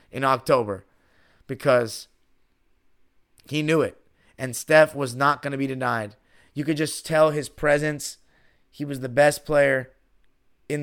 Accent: American